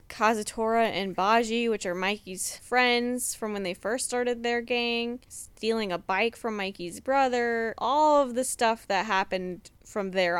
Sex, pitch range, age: female, 180-235 Hz, 10-29